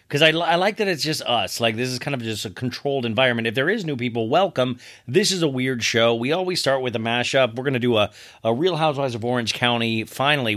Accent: American